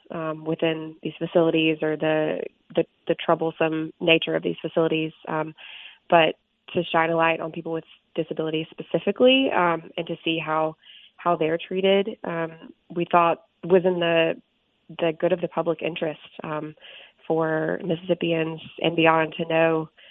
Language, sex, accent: English, female, American